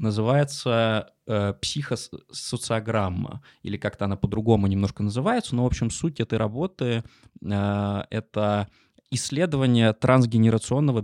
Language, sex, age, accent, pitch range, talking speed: Russian, male, 20-39, native, 105-125 Hz, 100 wpm